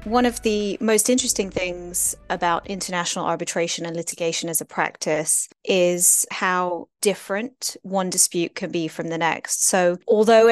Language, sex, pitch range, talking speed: English, female, 175-205 Hz, 150 wpm